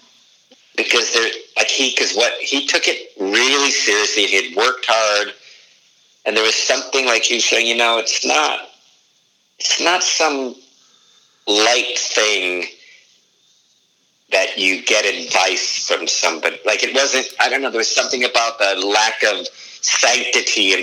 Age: 50-69